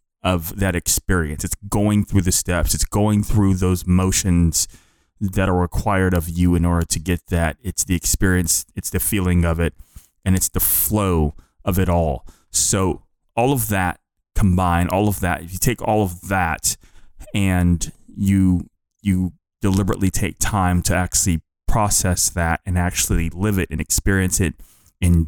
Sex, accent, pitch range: male, American, 85-100 Hz